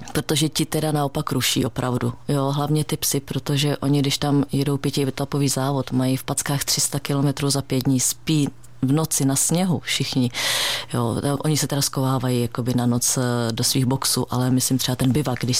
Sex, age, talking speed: female, 30-49, 180 wpm